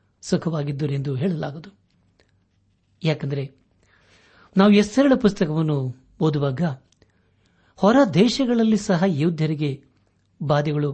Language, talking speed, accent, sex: Kannada, 70 wpm, native, male